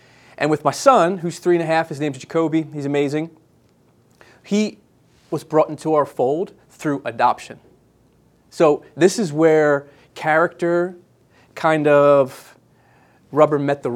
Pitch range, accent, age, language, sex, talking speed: 130-165 Hz, American, 30-49, English, male, 140 wpm